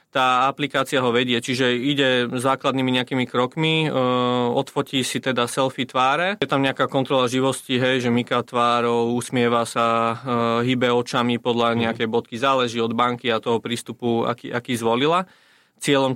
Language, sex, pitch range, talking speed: Slovak, male, 120-130 Hz, 150 wpm